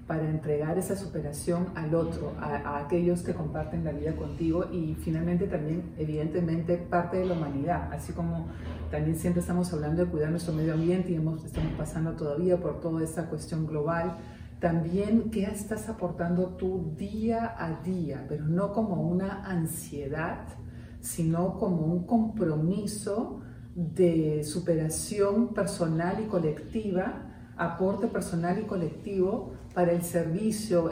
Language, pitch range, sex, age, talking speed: Spanish, 160-190 Hz, female, 40-59, 140 wpm